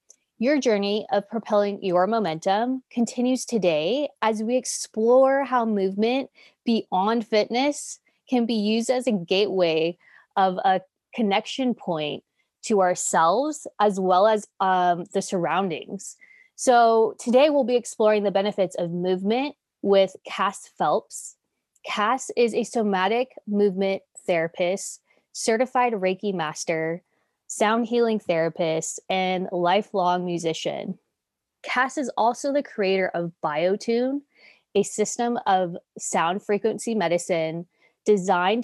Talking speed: 115 wpm